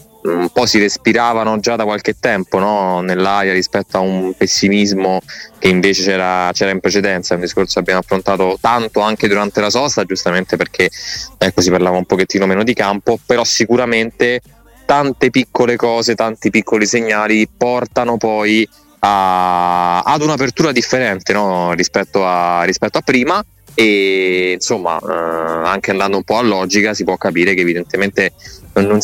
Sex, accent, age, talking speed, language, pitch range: male, native, 20-39, 155 wpm, Italian, 95-115 Hz